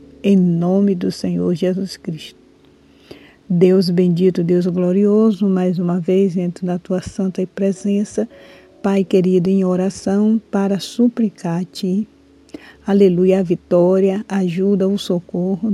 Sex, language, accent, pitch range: female, Portuguese, Brazilian, 180-200 Hz